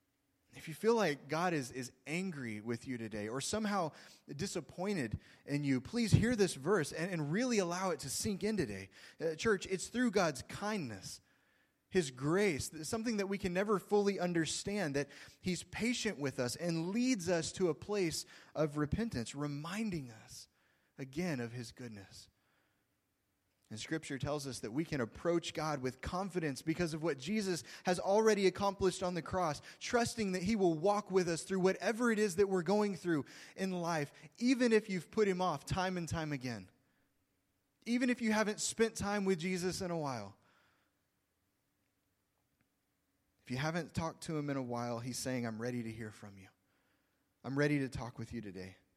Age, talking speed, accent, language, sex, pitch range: 20-39, 180 wpm, American, English, male, 125-195 Hz